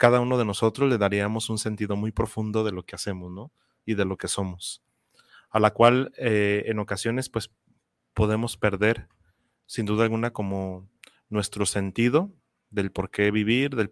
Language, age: Spanish, 30-49